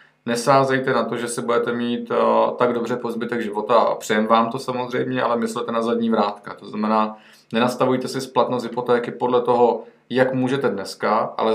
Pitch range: 110-125 Hz